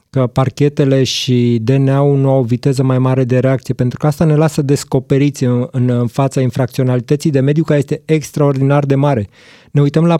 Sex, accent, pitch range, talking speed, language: male, native, 125-150 Hz, 195 wpm, Romanian